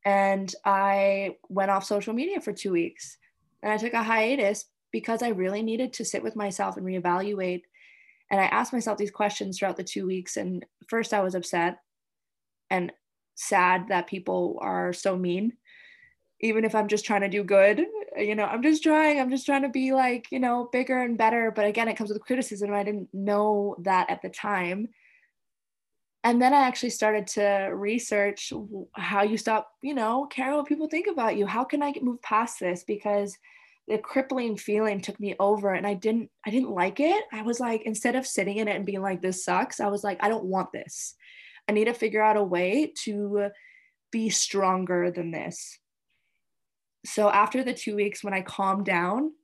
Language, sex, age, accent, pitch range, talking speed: English, female, 20-39, American, 195-245 Hz, 195 wpm